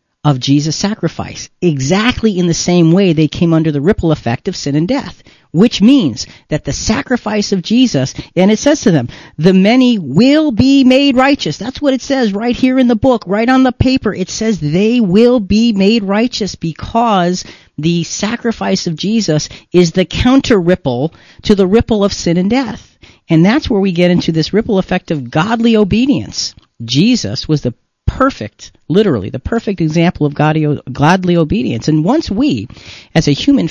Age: 40-59